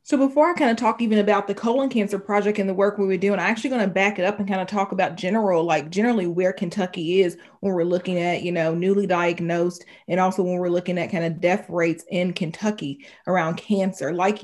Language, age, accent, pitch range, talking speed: English, 30-49, American, 185-210 Hz, 245 wpm